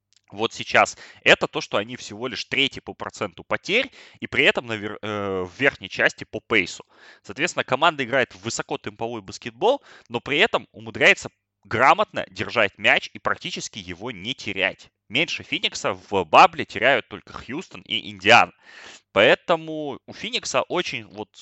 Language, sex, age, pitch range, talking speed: Russian, male, 20-39, 100-135 Hz, 155 wpm